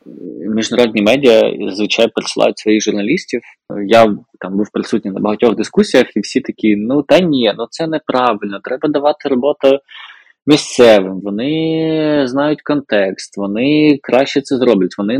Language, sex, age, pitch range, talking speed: Ukrainian, male, 20-39, 105-140 Hz, 135 wpm